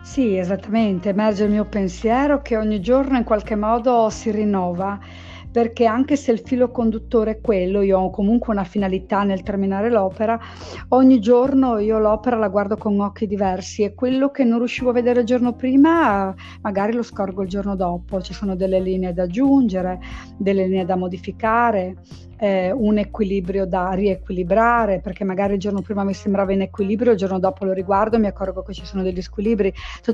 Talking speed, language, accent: 185 wpm, Italian, native